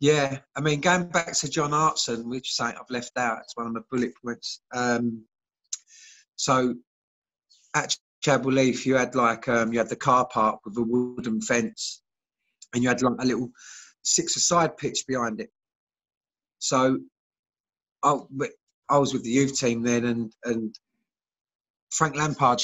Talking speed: 160 wpm